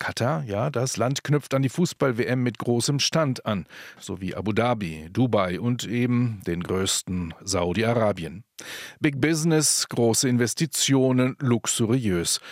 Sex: male